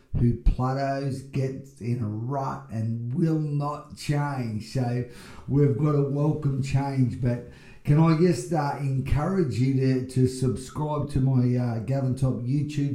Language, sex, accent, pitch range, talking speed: English, male, Australian, 120-140 Hz, 150 wpm